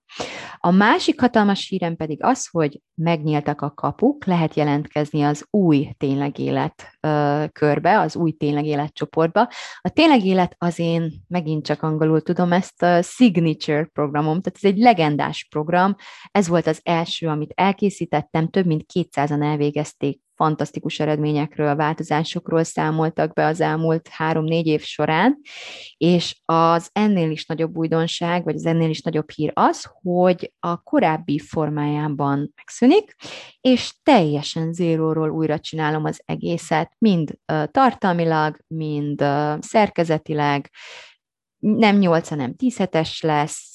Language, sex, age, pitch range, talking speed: Hungarian, female, 20-39, 150-180 Hz, 130 wpm